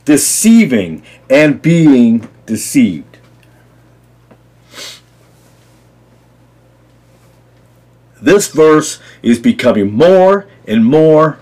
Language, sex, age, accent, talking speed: English, male, 50-69, American, 60 wpm